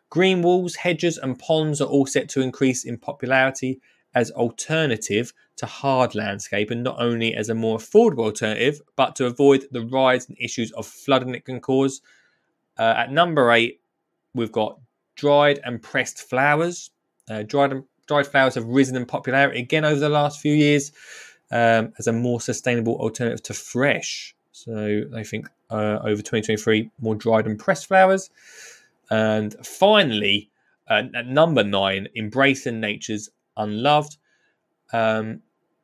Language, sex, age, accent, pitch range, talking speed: English, male, 20-39, British, 110-140 Hz, 150 wpm